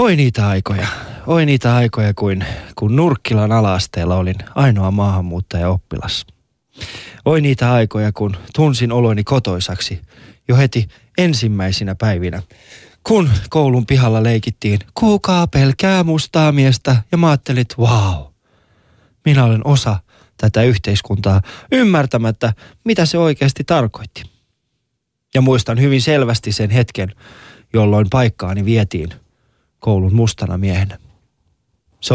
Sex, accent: male, native